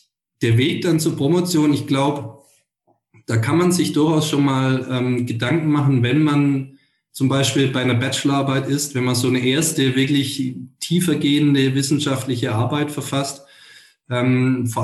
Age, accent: 20-39, German